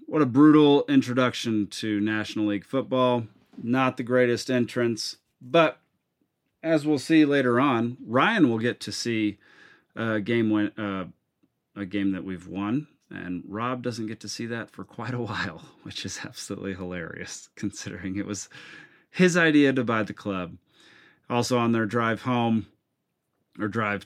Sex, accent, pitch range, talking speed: male, American, 100-130 Hz, 155 wpm